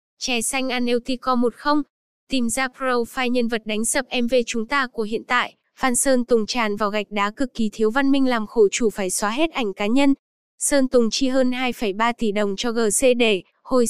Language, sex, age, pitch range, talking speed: Vietnamese, female, 10-29, 220-265 Hz, 215 wpm